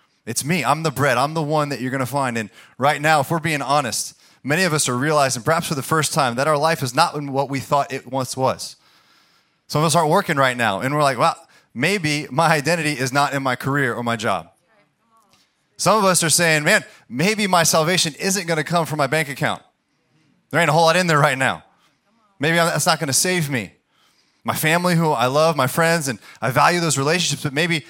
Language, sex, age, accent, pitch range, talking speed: English, male, 30-49, American, 130-160 Hz, 235 wpm